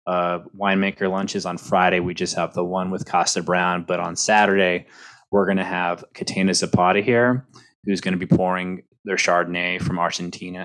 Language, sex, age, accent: English, male, 20-39, American